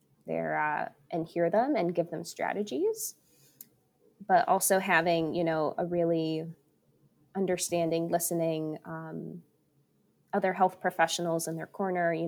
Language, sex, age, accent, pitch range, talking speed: English, female, 20-39, American, 165-200 Hz, 125 wpm